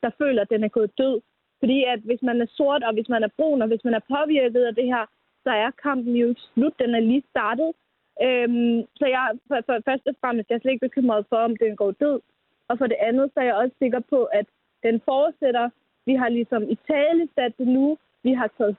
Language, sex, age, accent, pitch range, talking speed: Danish, female, 30-49, native, 225-275 Hz, 245 wpm